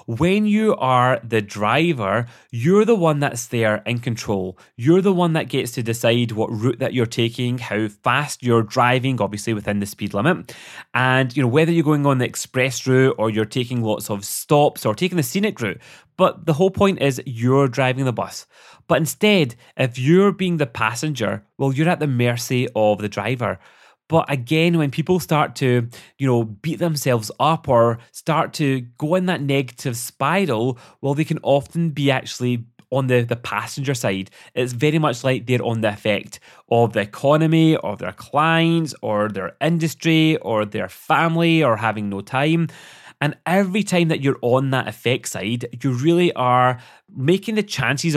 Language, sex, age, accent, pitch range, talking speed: English, male, 30-49, British, 115-160 Hz, 185 wpm